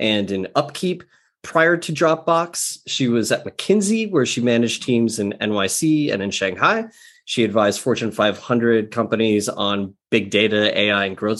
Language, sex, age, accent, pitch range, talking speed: English, male, 30-49, American, 110-145 Hz, 160 wpm